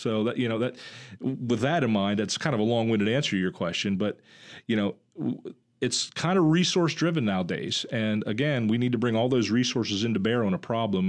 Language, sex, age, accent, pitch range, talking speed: English, male, 40-59, American, 105-140 Hz, 215 wpm